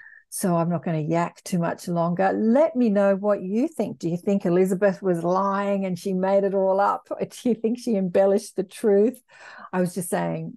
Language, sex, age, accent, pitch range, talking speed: English, female, 50-69, Australian, 175-220 Hz, 220 wpm